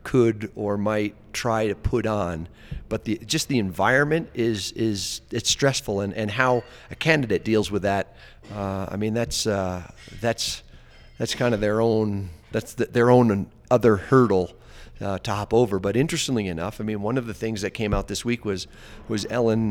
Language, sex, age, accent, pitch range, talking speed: English, male, 40-59, American, 100-120 Hz, 190 wpm